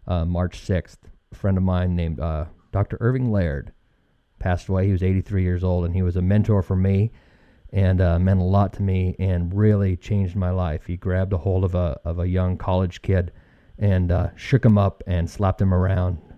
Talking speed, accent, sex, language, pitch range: 215 wpm, American, male, English, 90-100 Hz